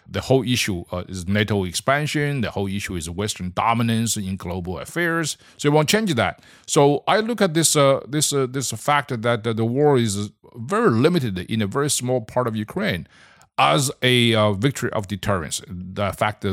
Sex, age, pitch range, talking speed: male, 50-69, 95-125 Hz, 190 wpm